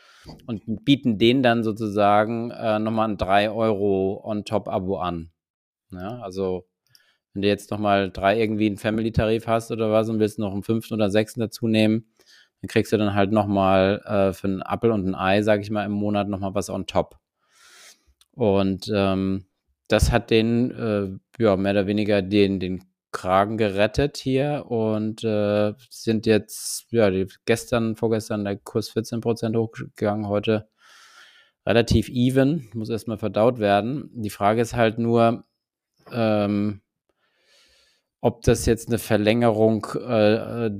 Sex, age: male, 20-39